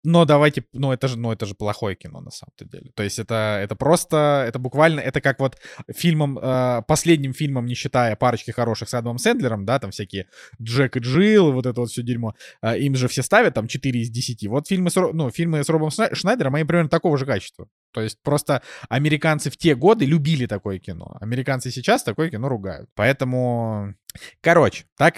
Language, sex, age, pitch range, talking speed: Russian, male, 20-39, 110-150 Hz, 200 wpm